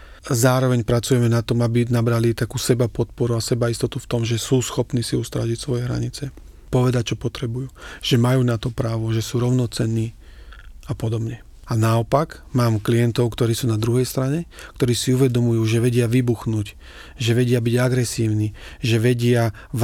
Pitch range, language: 115-125 Hz, Slovak